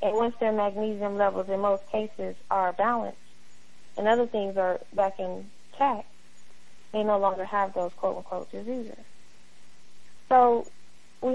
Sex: female